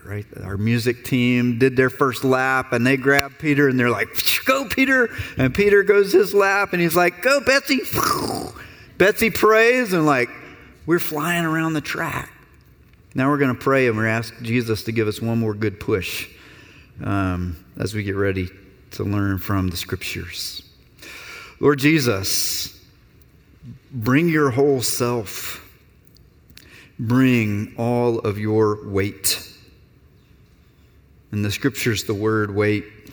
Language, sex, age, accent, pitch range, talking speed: English, male, 40-59, American, 100-130 Hz, 145 wpm